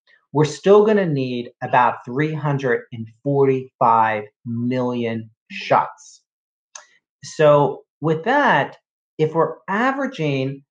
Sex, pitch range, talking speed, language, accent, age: male, 125-160 Hz, 85 wpm, English, American, 40-59